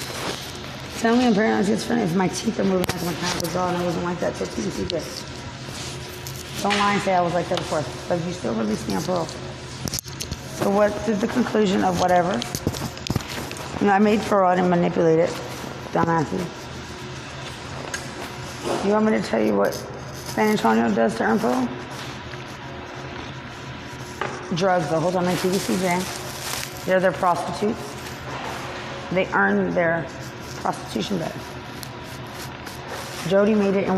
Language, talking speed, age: English, 145 wpm, 30-49